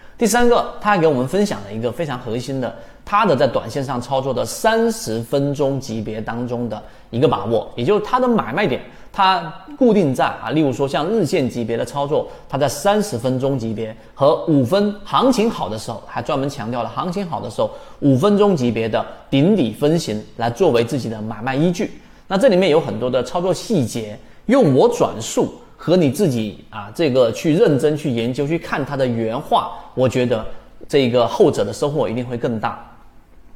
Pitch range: 115-155 Hz